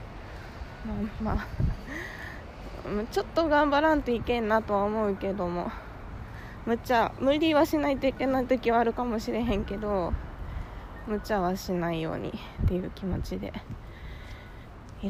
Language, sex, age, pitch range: Japanese, female, 20-39, 185-250 Hz